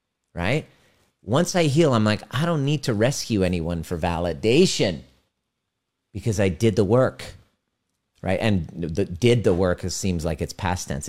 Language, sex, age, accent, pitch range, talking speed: English, male, 40-59, American, 90-115 Hz, 155 wpm